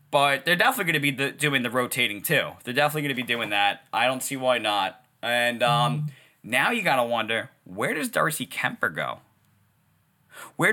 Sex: male